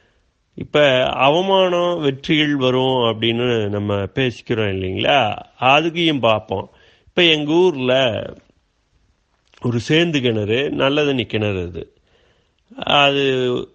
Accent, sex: native, male